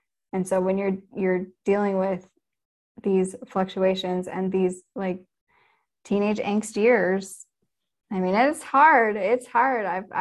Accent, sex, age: American, female, 10-29